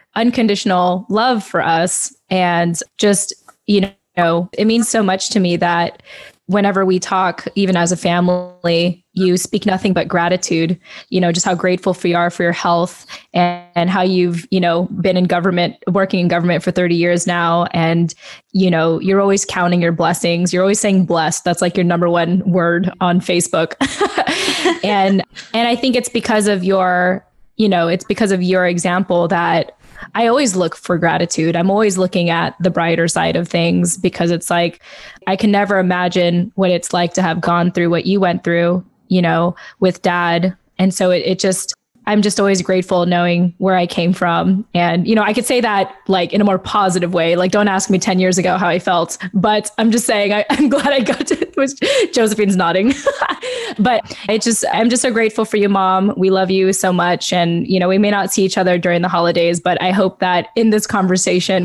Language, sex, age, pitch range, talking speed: English, female, 10-29, 175-205 Hz, 200 wpm